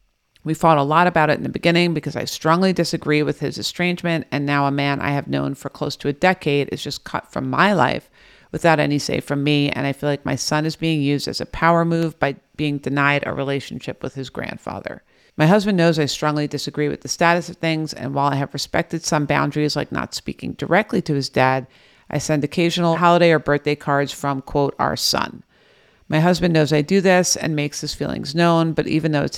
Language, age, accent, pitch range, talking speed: English, 50-69, American, 145-165 Hz, 225 wpm